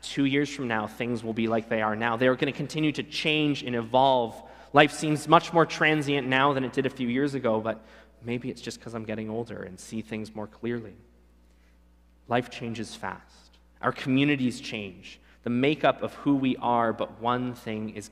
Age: 20-39